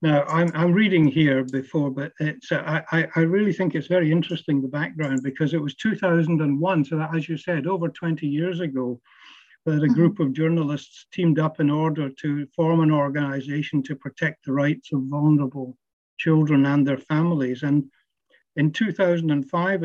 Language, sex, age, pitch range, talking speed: English, male, 60-79, 140-165 Hz, 170 wpm